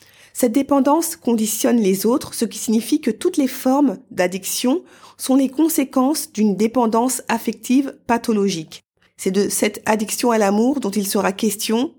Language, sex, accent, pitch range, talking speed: French, female, French, 205-260 Hz, 150 wpm